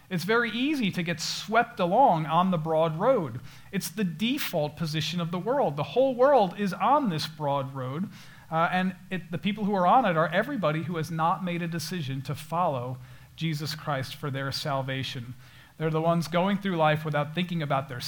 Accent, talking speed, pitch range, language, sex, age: American, 195 wpm, 145-180 Hz, English, male, 40-59